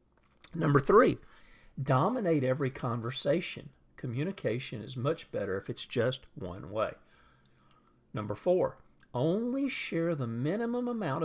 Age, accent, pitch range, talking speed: 50-69, American, 115-165 Hz, 110 wpm